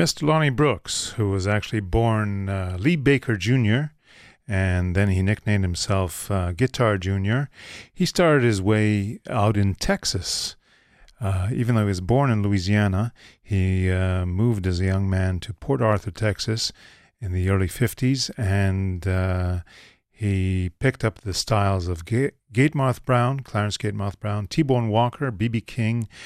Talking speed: 155 wpm